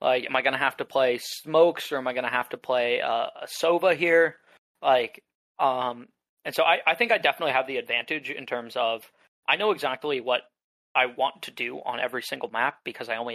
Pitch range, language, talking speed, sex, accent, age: 120-150 Hz, English, 230 wpm, male, American, 20-39